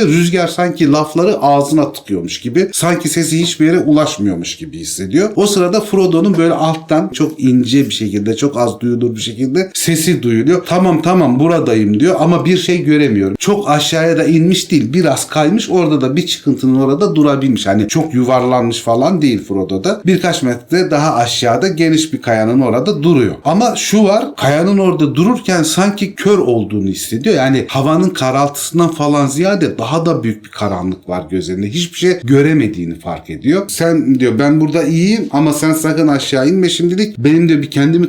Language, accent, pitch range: Turkish, native, 120-170 Hz